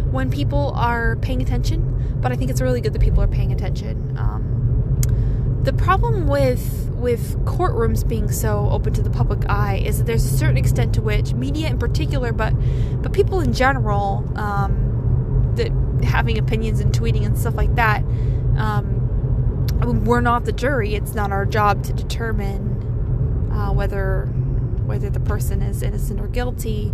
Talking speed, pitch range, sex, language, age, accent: 170 wpm, 115-125 Hz, female, English, 20-39, American